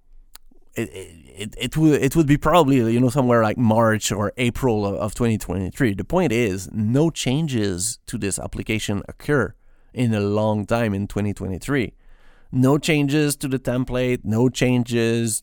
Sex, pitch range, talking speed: male, 100-125 Hz, 175 wpm